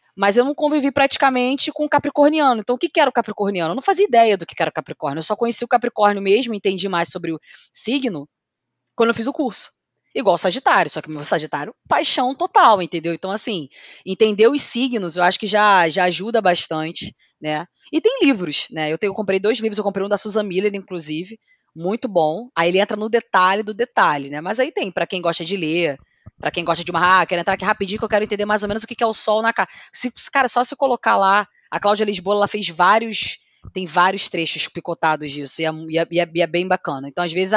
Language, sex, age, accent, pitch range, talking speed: Portuguese, female, 20-39, Brazilian, 170-235 Hz, 245 wpm